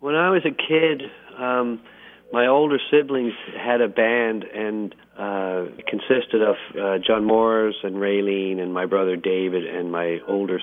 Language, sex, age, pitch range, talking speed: English, male, 50-69, 95-115 Hz, 160 wpm